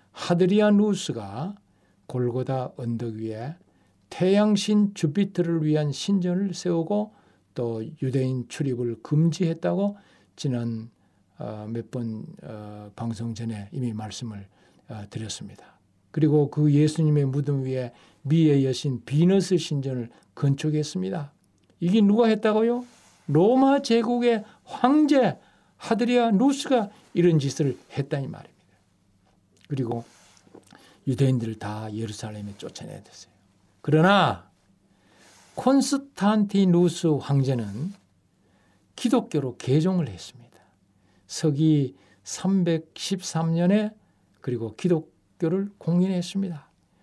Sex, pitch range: male, 115-190 Hz